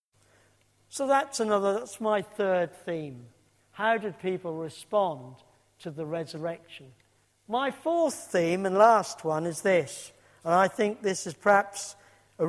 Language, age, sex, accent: English, 50-69, male, British